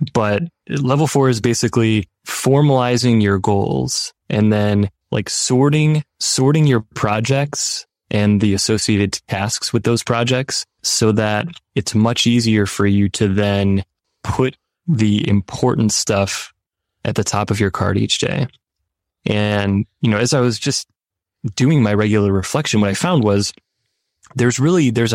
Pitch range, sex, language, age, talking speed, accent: 100-120 Hz, male, English, 20-39, 145 wpm, American